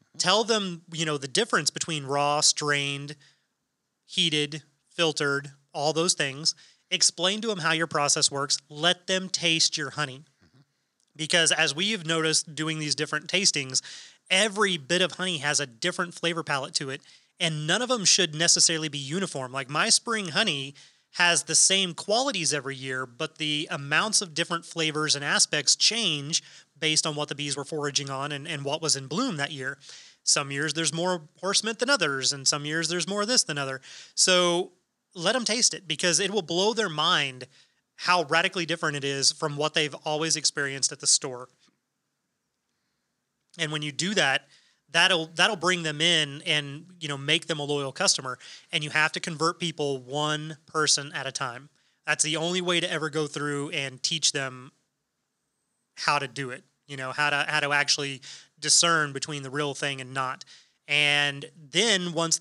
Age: 30-49